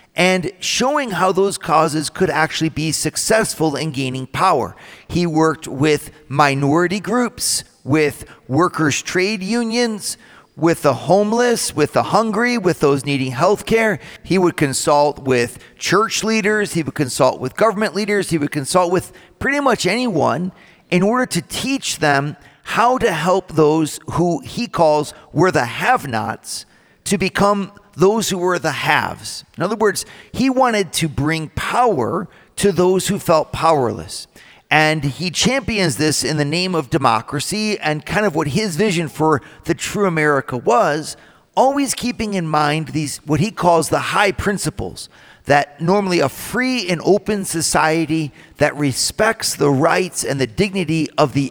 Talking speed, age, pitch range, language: 155 wpm, 40-59, 150-200 Hz, English